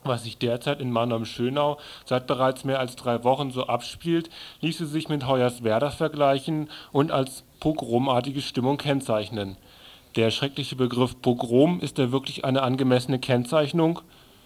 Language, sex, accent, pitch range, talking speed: German, male, German, 125-150 Hz, 135 wpm